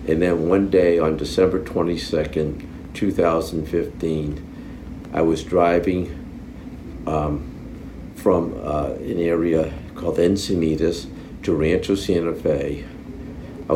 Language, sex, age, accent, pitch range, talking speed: English, male, 60-79, American, 80-85 Hz, 100 wpm